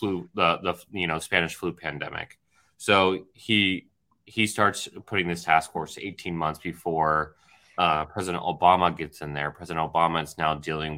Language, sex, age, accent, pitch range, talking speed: English, male, 30-49, American, 80-100 Hz, 165 wpm